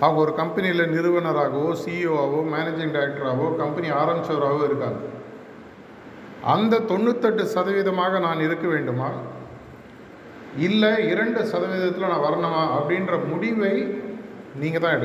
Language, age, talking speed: Tamil, 50-69, 95 wpm